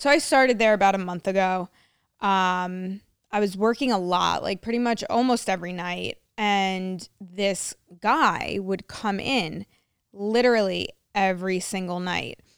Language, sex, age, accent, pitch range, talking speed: English, female, 20-39, American, 190-235 Hz, 145 wpm